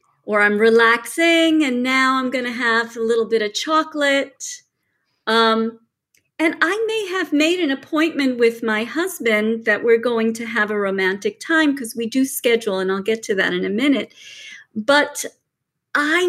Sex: female